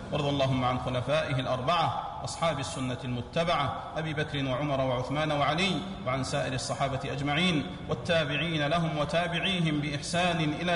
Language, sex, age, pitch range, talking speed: Arabic, male, 40-59, 150-195 Hz, 125 wpm